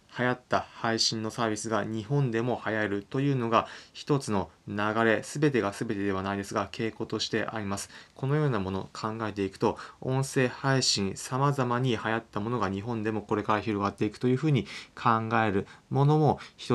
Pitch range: 100-130 Hz